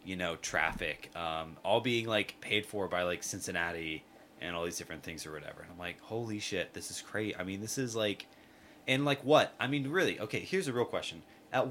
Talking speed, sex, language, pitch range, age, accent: 225 wpm, male, English, 90-110 Hz, 20-39, American